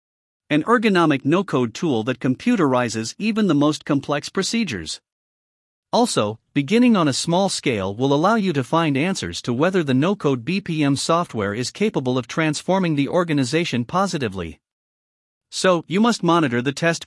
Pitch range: 130-180 Hz